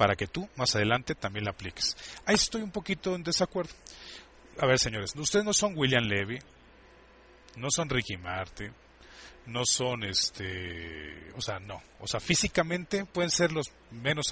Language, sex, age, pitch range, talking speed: Spanish, male, 40-59, 100-165 Hz, 165 wpm